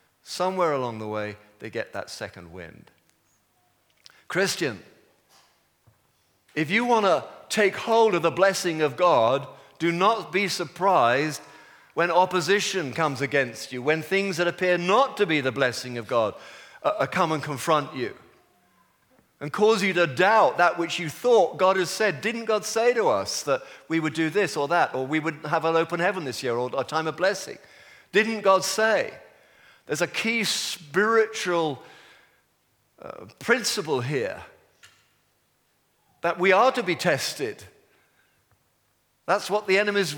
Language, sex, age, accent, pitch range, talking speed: English, male, 50-69, British, 140-190 Hz, 155 wpm